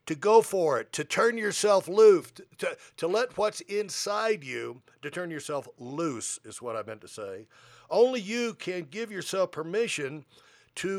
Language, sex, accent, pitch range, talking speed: English, male, American, 160-210 Hz, 170 wpm